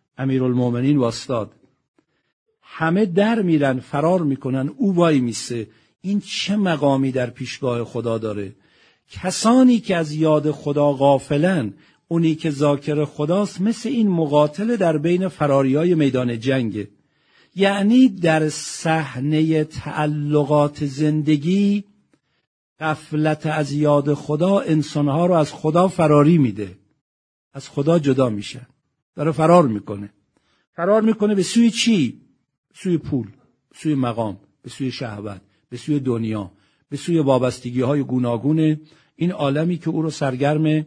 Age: 50-69